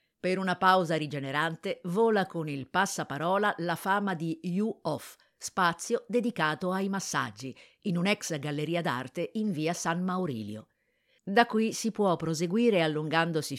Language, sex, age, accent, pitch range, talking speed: Italian, female, 50-69, native, 140-190 Hz, 135 wpm